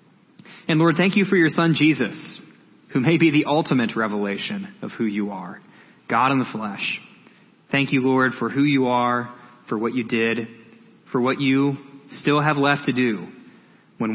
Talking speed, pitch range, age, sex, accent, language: 180 wpm, 120-165 Hz, 20-39, male, American, English